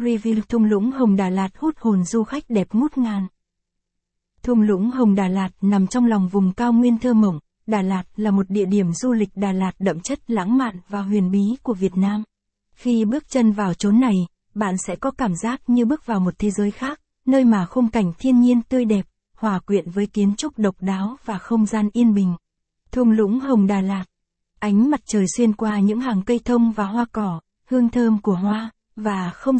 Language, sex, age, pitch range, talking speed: Vietnamese, female, 60-79, 195-235 Hz, 215 wpm